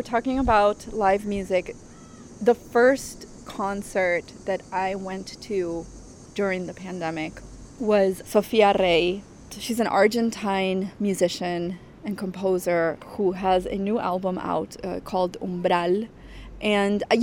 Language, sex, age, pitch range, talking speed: English, female, 20-39, 180-220 Hz, 120 wpm